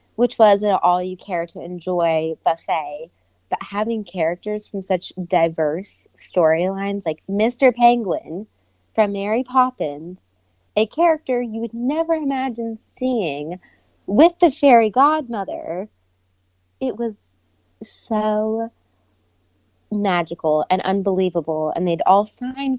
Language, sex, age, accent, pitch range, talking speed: English, female, 20-39, American, 170-220 Hz, 105 wpm